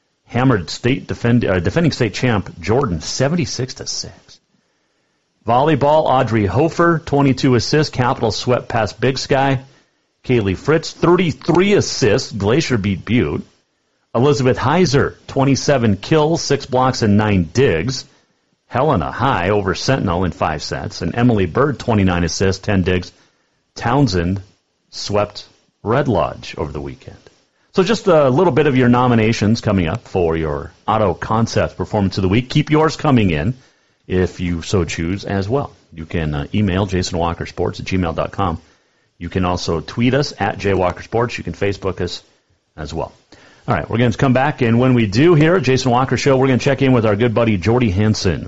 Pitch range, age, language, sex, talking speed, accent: 95-135 Hz, 40-59, English, male, 160 wpm, American